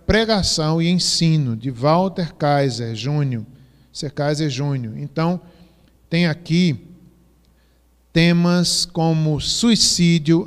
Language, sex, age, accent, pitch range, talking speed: Portuguese, male, 50-69, Brazilian, 140-180 Hz, 90 wpm